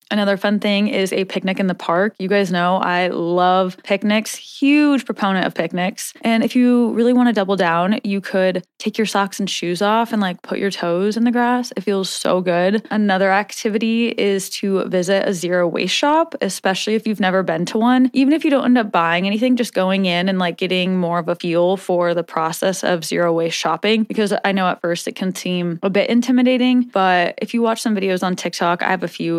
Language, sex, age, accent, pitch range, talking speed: English, female, 20-39, American, 180-225 Hz, 225 wpm